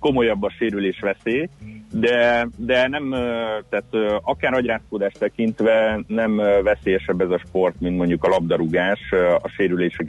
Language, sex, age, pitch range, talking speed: Hungarian, male, 30-49, 85-110 Hz, 130 wpm